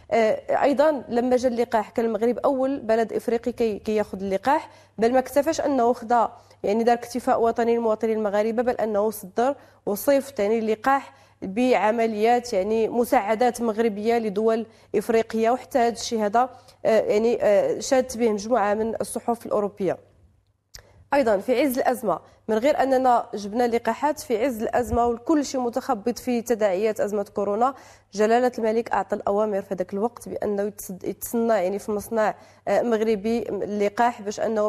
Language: English